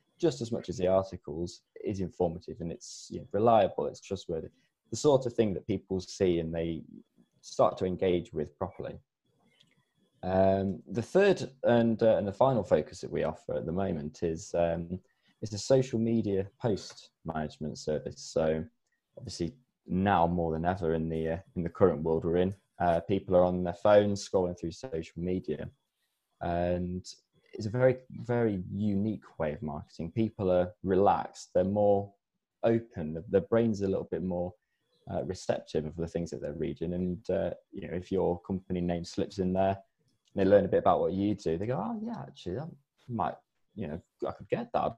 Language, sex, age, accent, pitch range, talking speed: English, male, 20-39, British, 85-115 Hz, 190 wpm